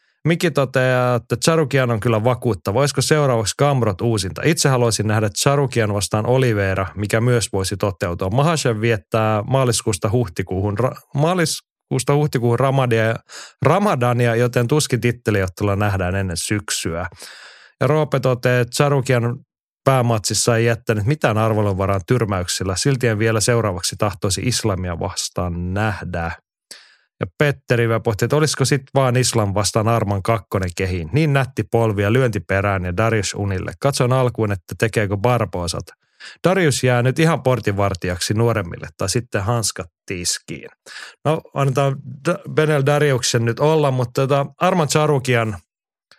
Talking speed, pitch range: 130 wpm, 105-135 Hz